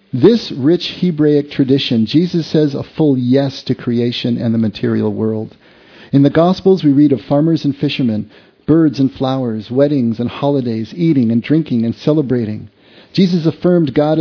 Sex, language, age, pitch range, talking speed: male, English, 50-69, 130-170 Hz, 165 wpm